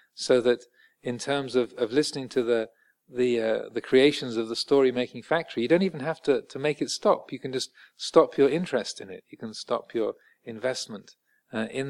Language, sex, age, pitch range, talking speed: English, male, 40-59, 120-160 Hz, 210 wpm